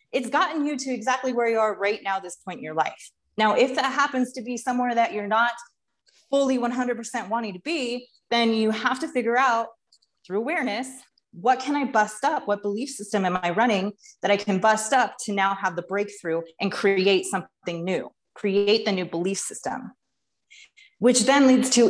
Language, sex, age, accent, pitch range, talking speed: English, female, 30-49, American, 200-255 Hz, 195 wpm